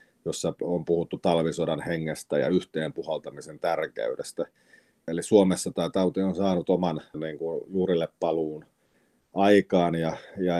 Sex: male